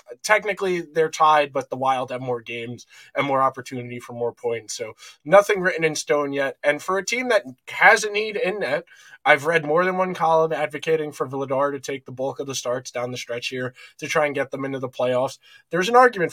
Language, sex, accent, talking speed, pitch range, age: English, male, American, 230 wpm, 125-170 Hz, 20-39